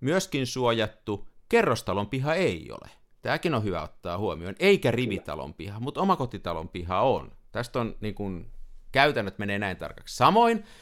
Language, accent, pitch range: Finnish, native, 95-145 Hz